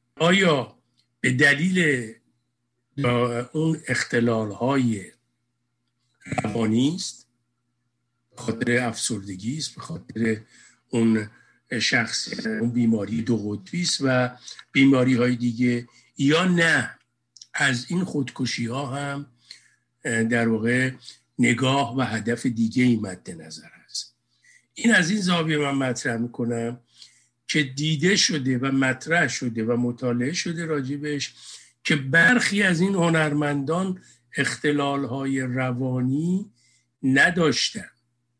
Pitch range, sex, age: 120-155 Hz, male, 60-79